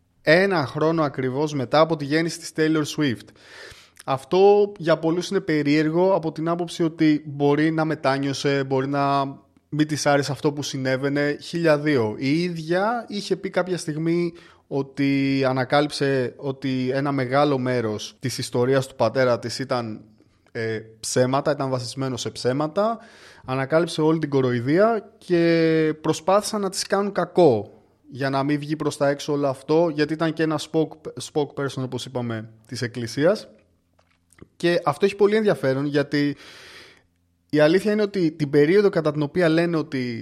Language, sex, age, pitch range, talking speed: Greek, male, 20-39, 130-165 Hz, 150 wpm